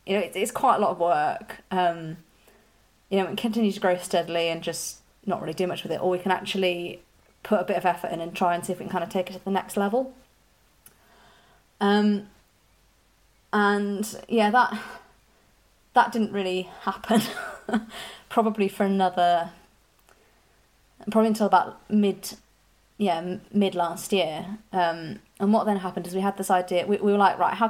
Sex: female